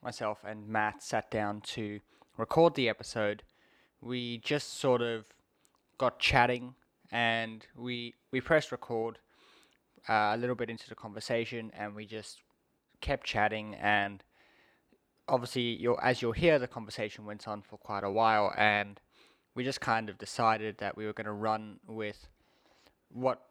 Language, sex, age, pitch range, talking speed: English, male, 20-39, 105-125 Hz, 155 wpm